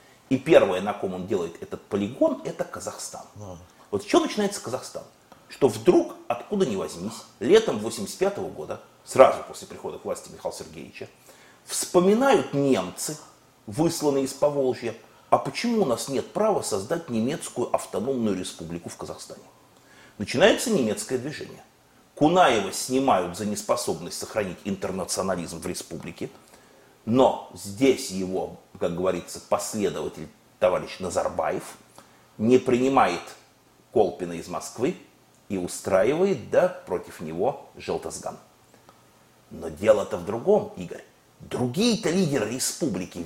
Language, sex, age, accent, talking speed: Russian, male, 30-49, native, 120 wpm